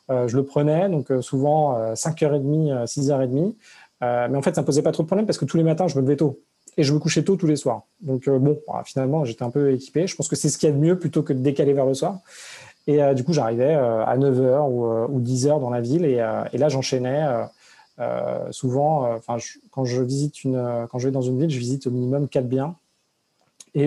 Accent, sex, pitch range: French, male, 125-150 Hz